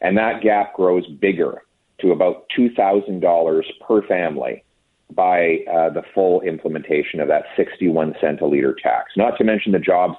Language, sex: English, male